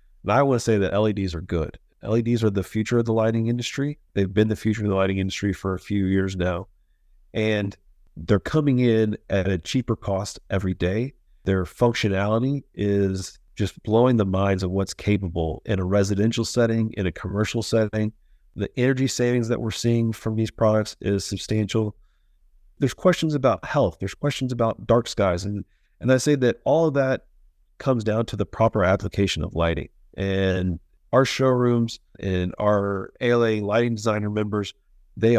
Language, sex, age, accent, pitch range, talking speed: English, male, 30-49, American, 95-115 Hz, 175 wpm